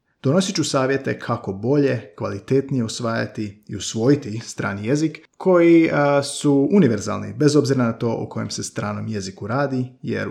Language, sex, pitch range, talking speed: Croatian, male, 105-125 Hz, 150 wpm